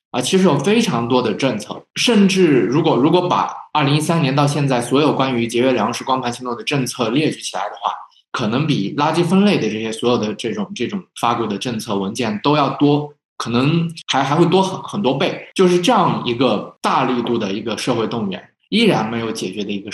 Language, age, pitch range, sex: Chinese, 20-39, 120-155 Hz, male